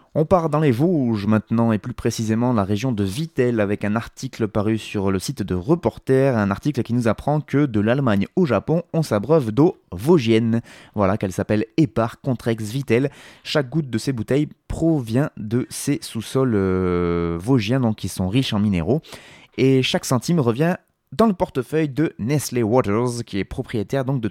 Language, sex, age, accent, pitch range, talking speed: French, male, 20-39, French, 110-150 Hz, 185 wpm